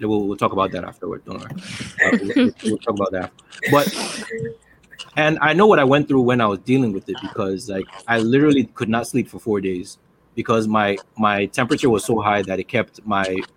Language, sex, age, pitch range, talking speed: English, male, 30-49, 105-135 Hz, 215 wpm